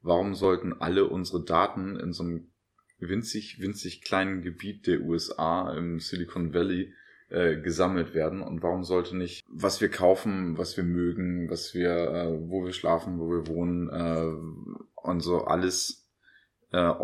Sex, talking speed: male, 155 wpm